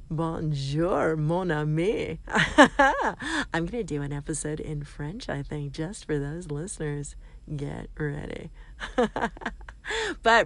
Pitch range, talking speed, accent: 165-235 Hz, 115 wpm, American